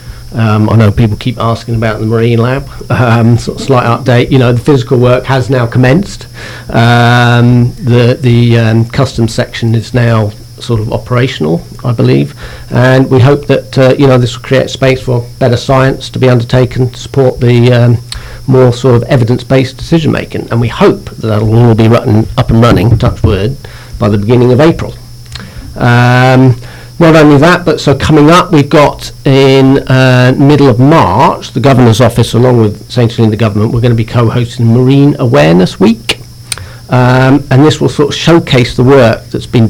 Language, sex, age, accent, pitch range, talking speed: English, male, 50-69, British, 115-130 Hz, 190 wpm